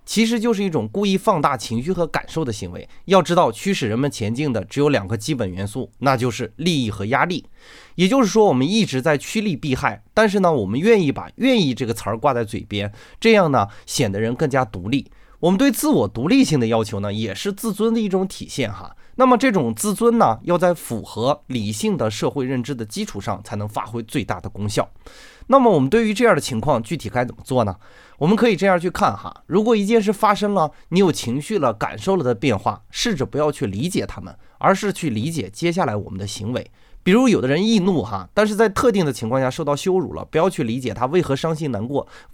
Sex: male